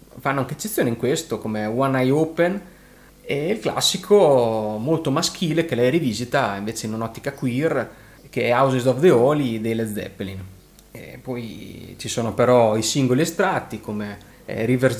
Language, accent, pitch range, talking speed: Italian, native, 105-130 Hz, 160 wpm